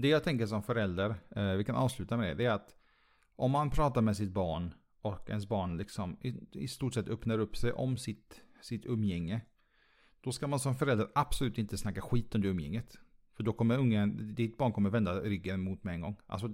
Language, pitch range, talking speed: Swedish, 100-130 Hz, 220 wpm